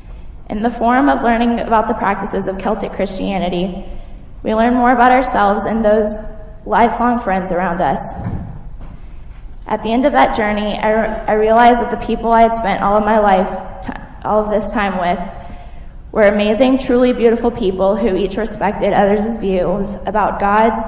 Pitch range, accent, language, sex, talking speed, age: 190-230 Hz, American, English, female, 160 wpm, 10-29